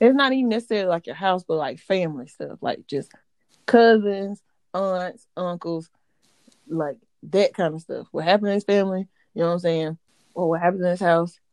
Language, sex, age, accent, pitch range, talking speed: English, female, 20-39, American, 170-215 Hz, 195 wpm